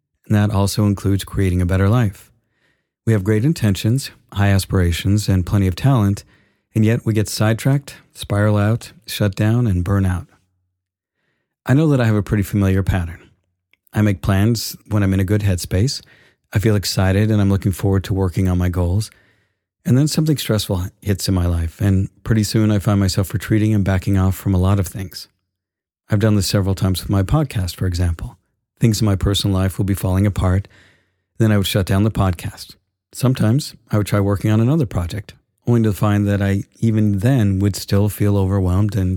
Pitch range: 95-110 Hz